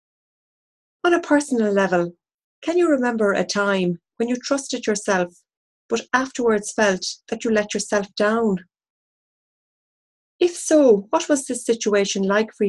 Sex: female